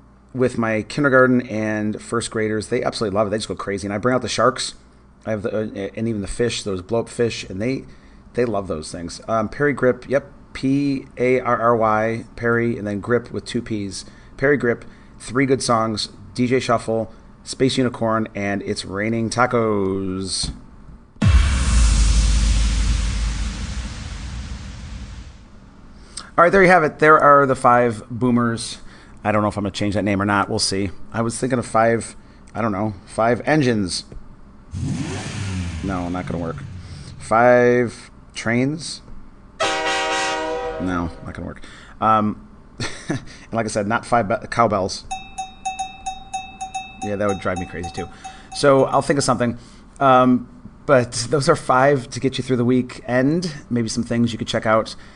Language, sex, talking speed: English, male, 165 wpm